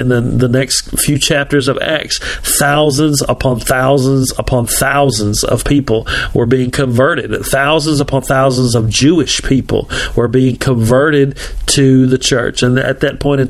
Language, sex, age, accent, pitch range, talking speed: English, male, 40-59, American, 130-150 Hz, 155 wpm